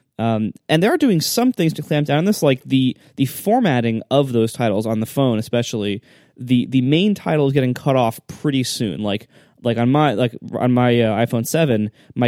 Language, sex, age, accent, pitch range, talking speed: English, male, 20-39, American, 115-155 Hz, 210 wpm